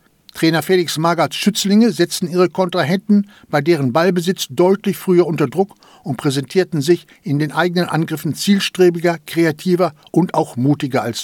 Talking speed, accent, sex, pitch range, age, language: 145 wpm, German, male, 150-190 Hz, 60-79, German